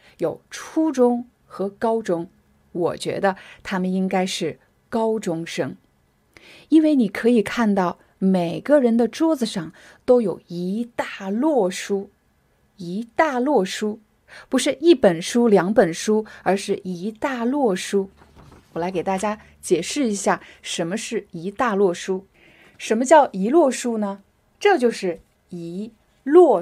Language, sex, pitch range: Chinese, female, 190-240 Hz